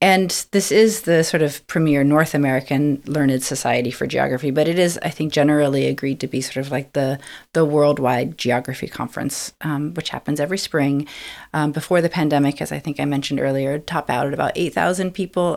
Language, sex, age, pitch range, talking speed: English, female, 30-49, 140-175 Hz, 195 wpm